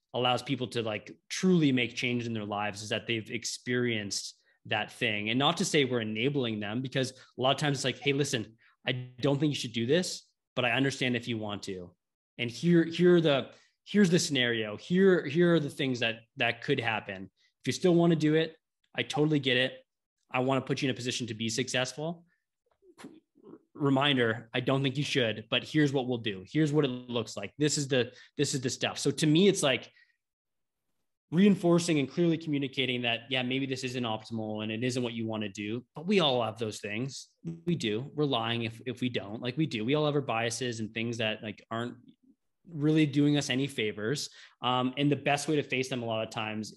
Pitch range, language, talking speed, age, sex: 115-145 Hz, English, 225 wpm, 20-39, male